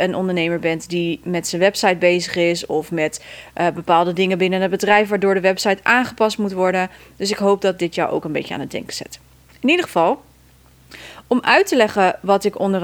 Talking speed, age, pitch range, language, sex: 215 wpm, 30-49, 175-220 Hz, Dutch, female